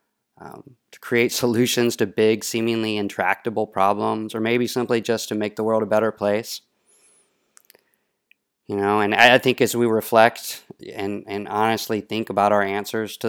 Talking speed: 165 wpm